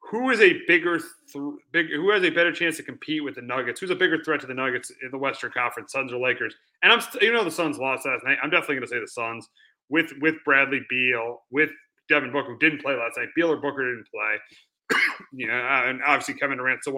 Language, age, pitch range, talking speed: English, 30-49, 130-165 Hz, 255 wpm